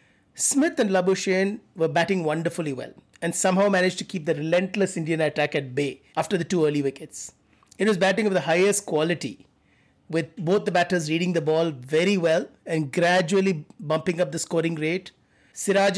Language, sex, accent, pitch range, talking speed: English, male, Indian, 165-195 Hz, 175 wpm